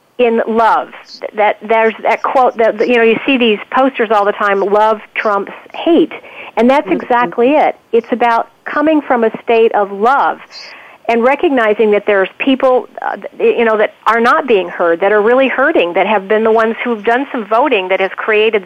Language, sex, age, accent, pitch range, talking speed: English, female, 50-69, American, 210-270 Hz, 195 wpm